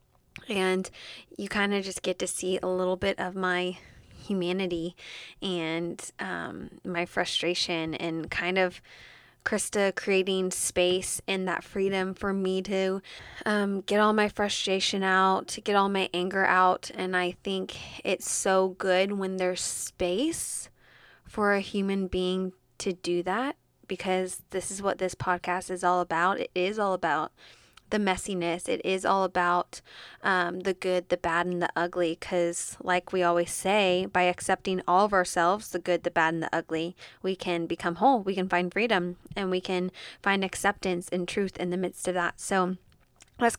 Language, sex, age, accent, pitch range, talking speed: English, female, 20-39, American, 180-200 Hz, 170 wpm